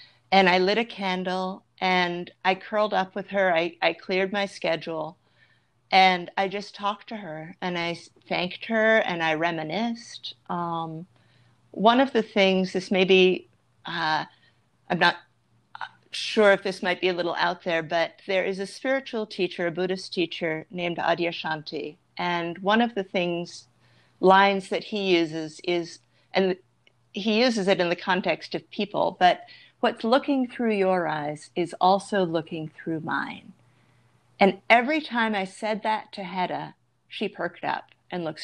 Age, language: 40-59, English